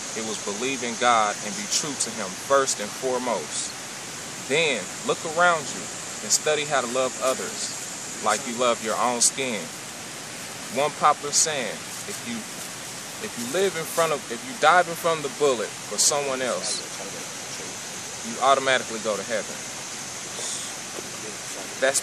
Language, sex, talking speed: English, male, 155 wpm